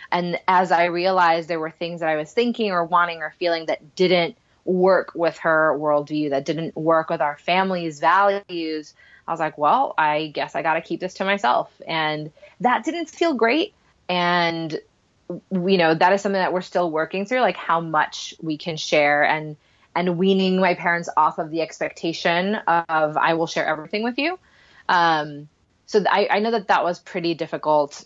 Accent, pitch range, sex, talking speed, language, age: American, 160-195 Hz, female, 195 wpm, English, 20-39